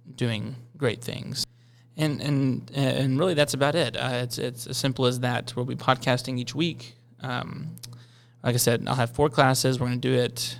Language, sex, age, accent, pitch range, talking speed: English, male, 20-39, American, 120-135 Hz, 200 wpm